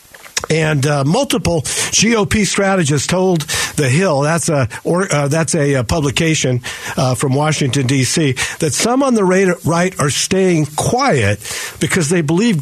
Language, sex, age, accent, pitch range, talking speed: English, male, 50-69, American, 135-160 Hz, 140 wpm